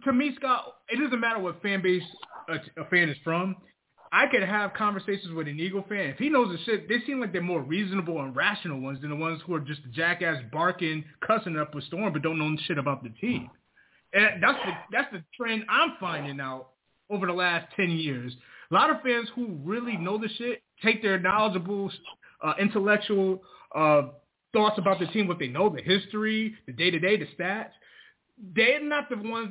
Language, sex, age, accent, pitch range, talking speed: English, male, 20-39, American, 170-245 Hz, 205 wpm